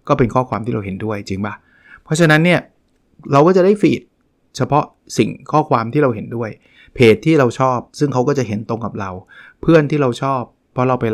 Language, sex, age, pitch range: Thai, male, 20-39, 105-130 Hz